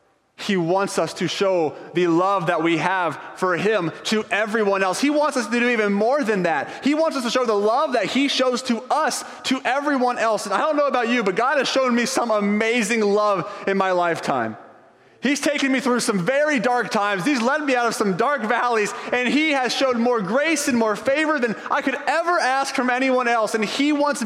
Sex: male